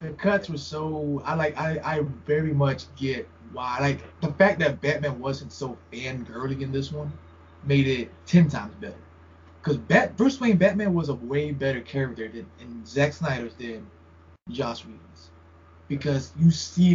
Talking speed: 175 wpm